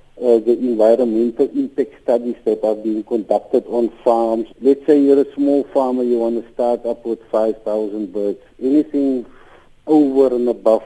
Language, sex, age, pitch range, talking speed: English, male, 50-69, 115-155 Hz, 160 wpm